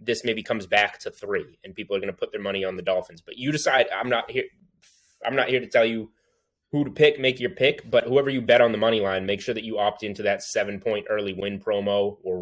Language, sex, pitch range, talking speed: English, male, 100-130 Hz, 270 wpm